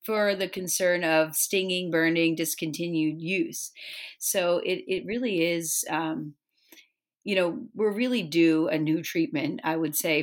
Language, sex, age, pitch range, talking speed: English, female, 30-49, 165-200 Hz, 145 wpm